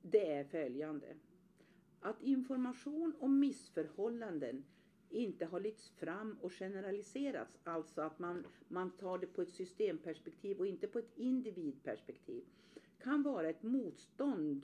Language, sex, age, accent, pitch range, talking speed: Swedish, female, 50-69, native, 150-225 Hz, 125 wpm